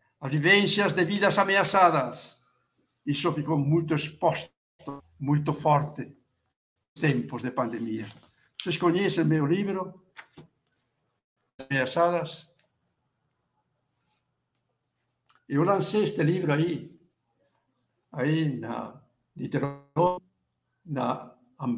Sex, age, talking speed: male, 70-89, 75 wpm